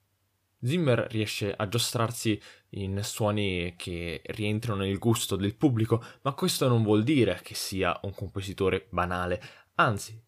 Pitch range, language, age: 100-130 Hz, Italian, 20-39